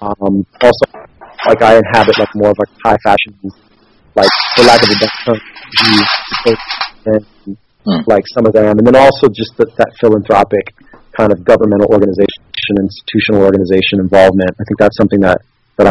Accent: American